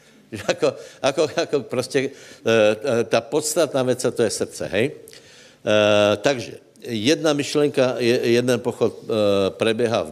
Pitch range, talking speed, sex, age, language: 105-125 Hz, 105 wpm, male, 70-89, Slovak